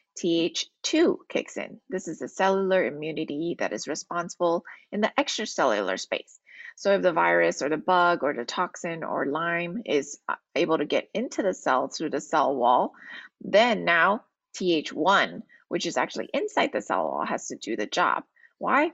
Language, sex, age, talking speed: English, female, 20-39, 170 wpm